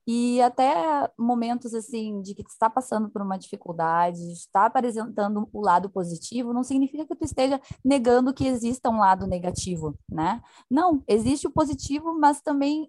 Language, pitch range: Portuguese, 195-260 Hz